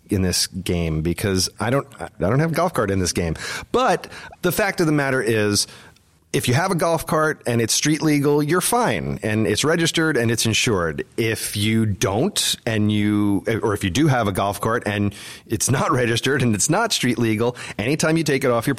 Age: 30-49